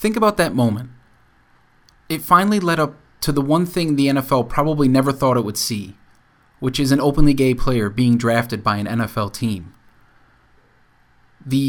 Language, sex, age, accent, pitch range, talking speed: English, male, 30-49, American, 120-155 Hz, 170 wpm